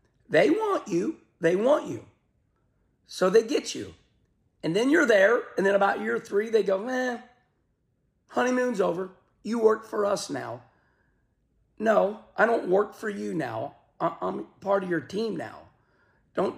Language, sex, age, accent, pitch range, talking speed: English, male, 40-59, American, 155-215 Hz, 155 wpm